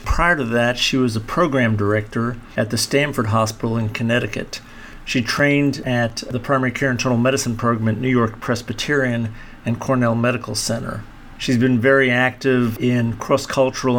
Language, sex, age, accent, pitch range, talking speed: English, male, 50-69, American, 120-140 Hz, 160 wpm